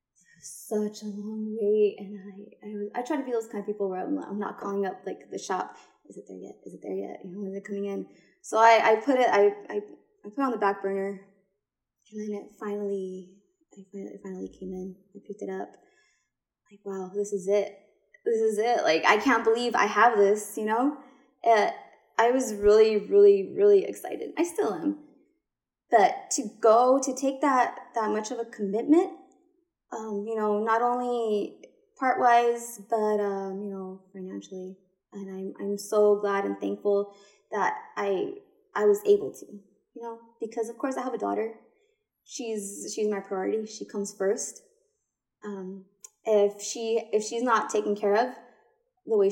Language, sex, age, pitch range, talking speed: English, female, 20-39, 200-255 Hz, 185 wpm